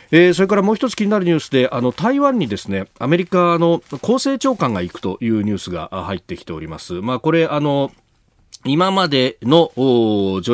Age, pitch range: 40-59, 110-175 Hz